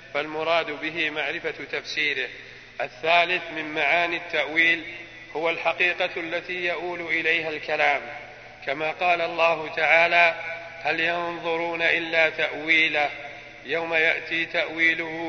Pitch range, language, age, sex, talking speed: 160-170 Hz, Arabic, 50-69, male, 100 wpm